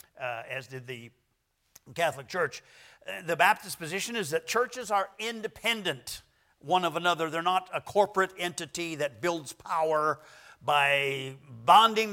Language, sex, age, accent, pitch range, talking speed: English, male, 50-69, American, 150-195 Hz, 140 wpm